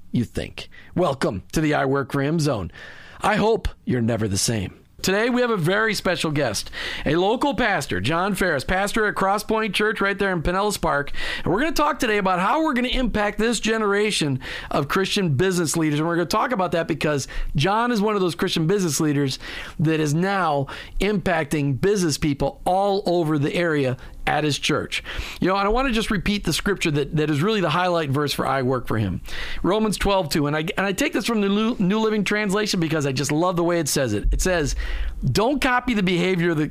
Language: English